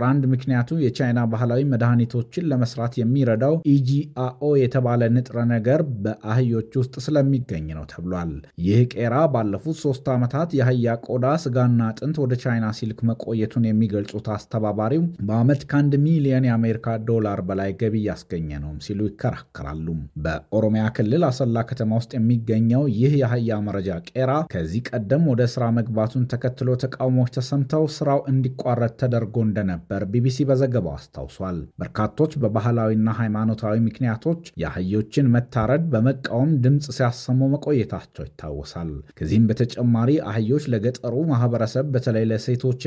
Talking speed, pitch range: 120 wpm, 110-130 Hz